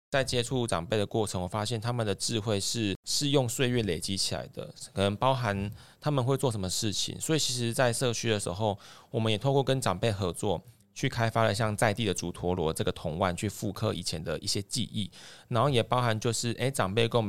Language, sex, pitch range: Chinese, male, 95-120 Hz